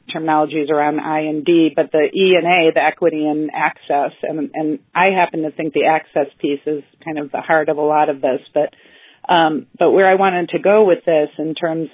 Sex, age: female, 40-59